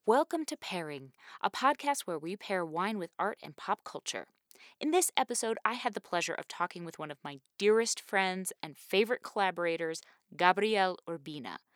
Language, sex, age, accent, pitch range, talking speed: English, female, 20-39, American, 160-230 Hz, 175 wpm